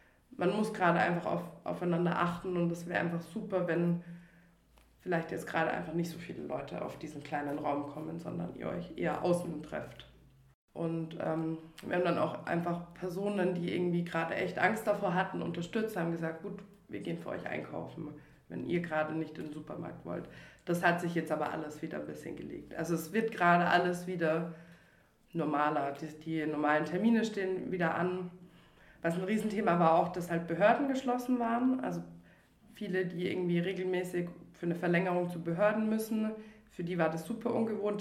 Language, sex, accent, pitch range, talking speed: German, female, German, 165-195 Hz, 180 wpm